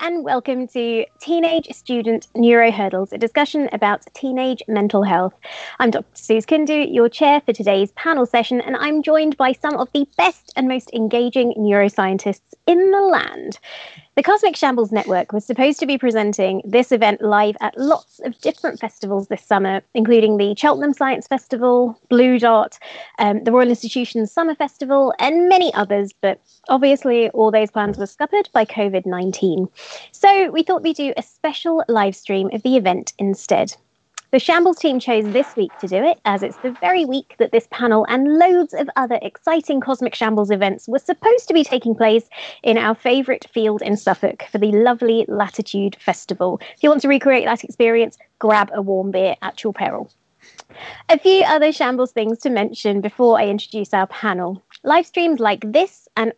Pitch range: 210-290 Hz